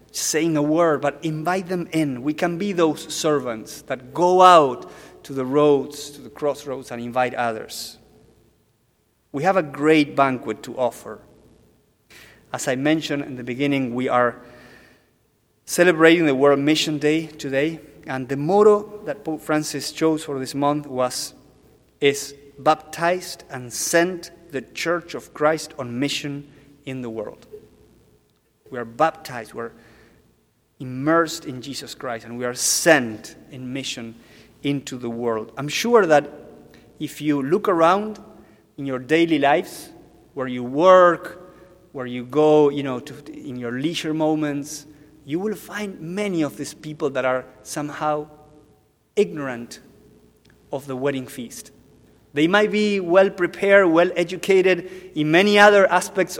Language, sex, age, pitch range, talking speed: English, male, 30-49, 130-165 Hz, 145 wpm